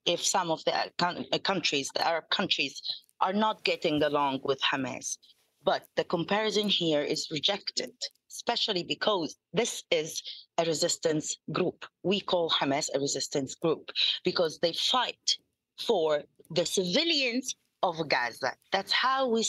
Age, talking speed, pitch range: 30-49, 135 wpm, 175-260 Hz